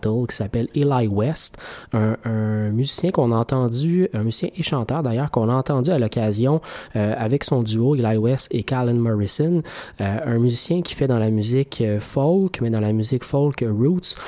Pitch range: 110-145 Hz